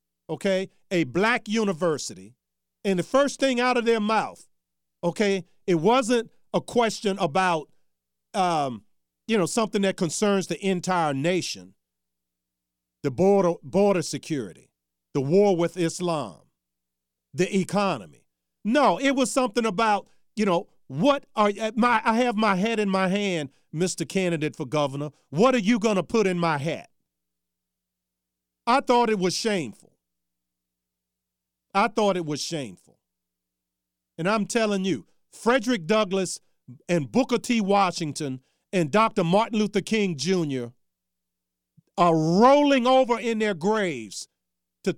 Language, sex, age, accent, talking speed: English, male, 50-69, American, 135 wpm